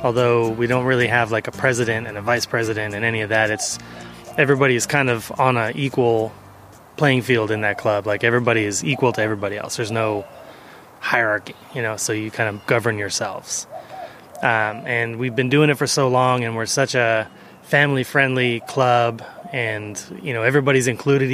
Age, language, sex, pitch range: 20-39, English, male, 110-130 Hz